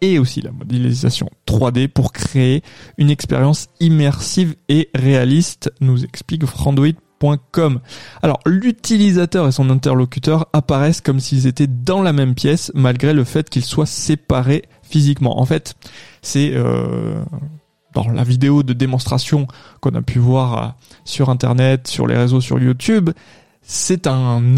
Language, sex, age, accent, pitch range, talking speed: French, male, 20-39, French, 125-145 Hz, 140 wpm